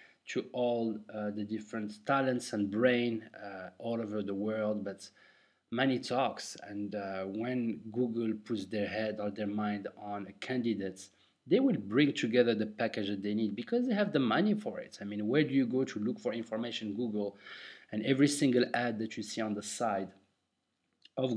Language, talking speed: English, 185 wpm